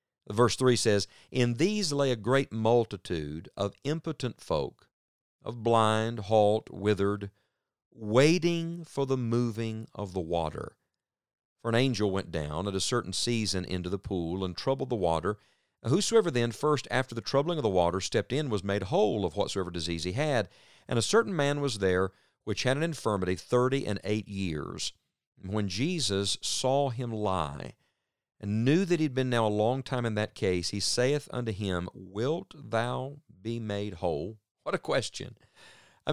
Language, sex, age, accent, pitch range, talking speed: English, male, 50-69, American, 100-130 Hz, 170 wpm